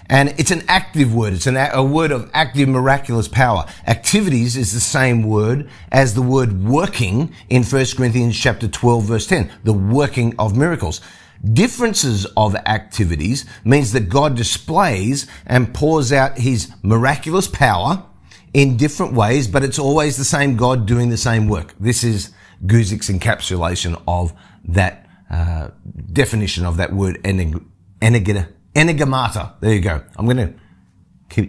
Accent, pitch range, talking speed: Australian, 95-130 Hz, 150 wpm